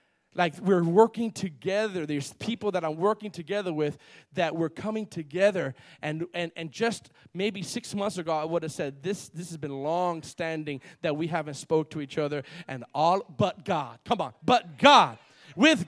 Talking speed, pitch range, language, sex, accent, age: 180 wpm, 150-210 Hz, English, male, American, 40-59